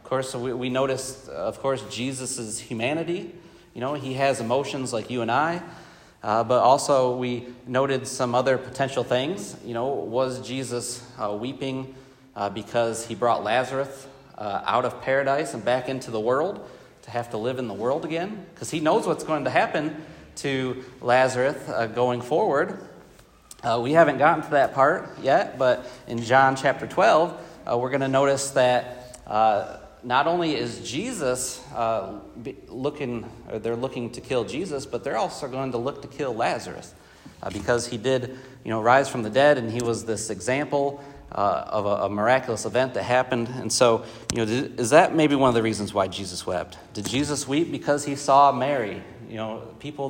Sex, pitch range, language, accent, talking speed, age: male, 115-135 Hz, English, American, 185 wpm, 30-49